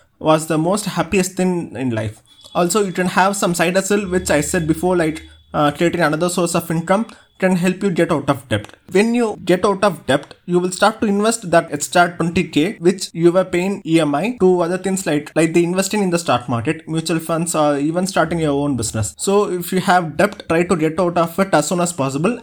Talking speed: 225 wpm